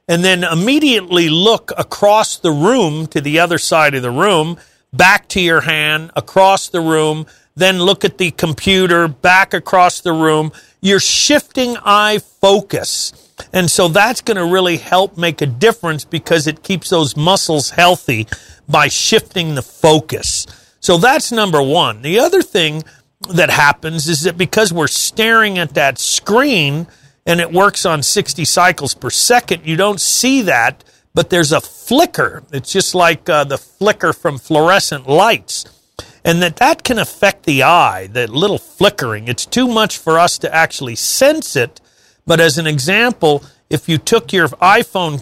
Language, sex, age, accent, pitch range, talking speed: English, male, 50-69, American, 155-195 Hz, 165 wpm